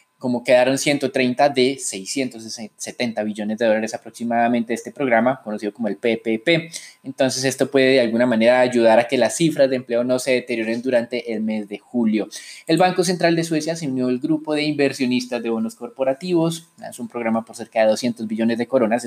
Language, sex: Spanish, male